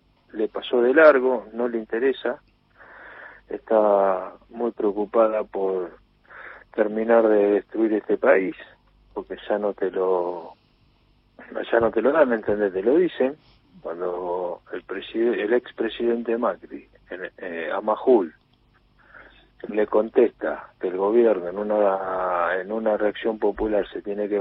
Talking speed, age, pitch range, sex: 135 wpm, 40-59, 105-125 Hz, male